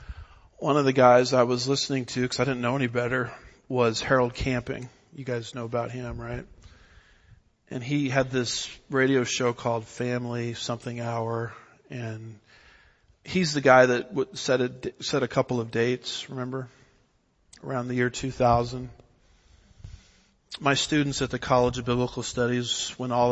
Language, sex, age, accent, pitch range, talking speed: English, male, 40-59, American, 120-130 Hz, 150 wpm